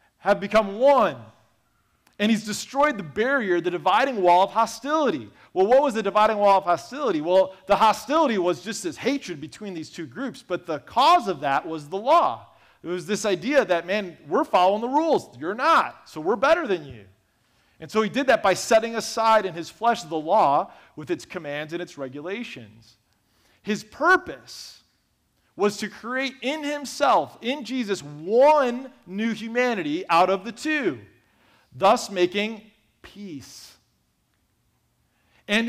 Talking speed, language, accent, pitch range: 160 wpm, English, American, 160-240 Hz